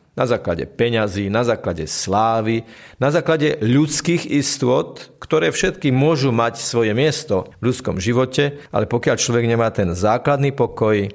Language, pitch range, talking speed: Slovak, 105-135 Hz, 140 wpm